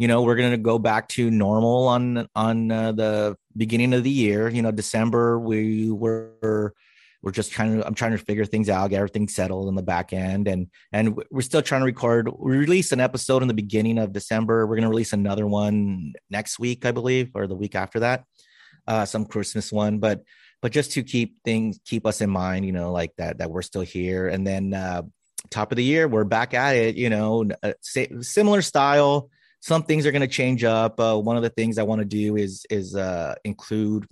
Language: English